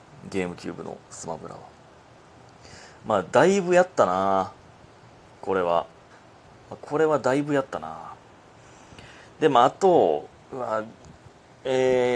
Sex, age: male, 30-49